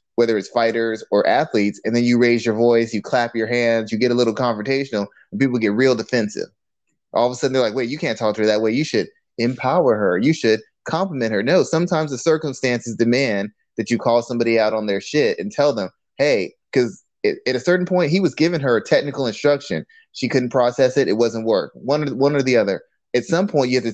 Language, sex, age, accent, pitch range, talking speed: English, male, 20-39, American, 115-140 Hz, 235 wpm